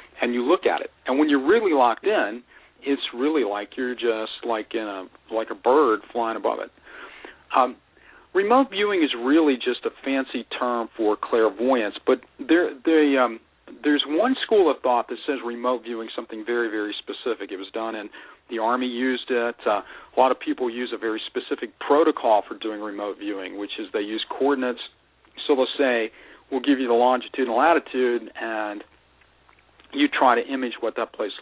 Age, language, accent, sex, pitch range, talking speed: 40-59, English, American, male, 115-150 Hz, 185 wpm